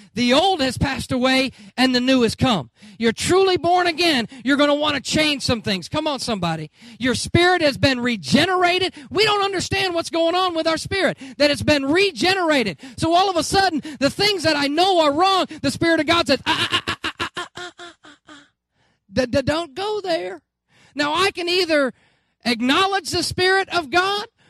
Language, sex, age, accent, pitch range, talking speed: English, male, 40-59, American, 255-345 Hz, 210 wpm